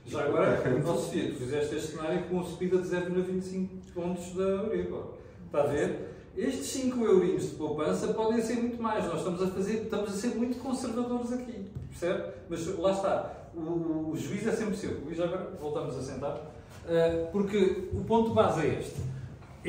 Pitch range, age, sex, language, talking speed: 150-190 Hz, 40-59, male, Portuguese, 185 wpm